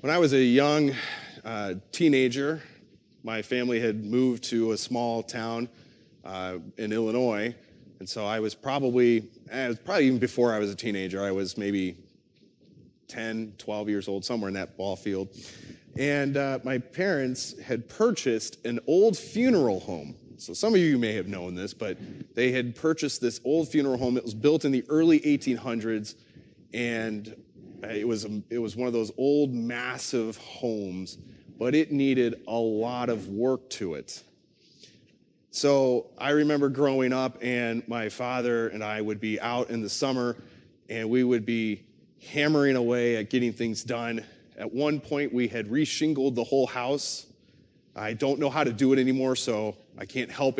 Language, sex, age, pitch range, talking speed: English, male, 30-49, 110-135 Hz, 170 wpm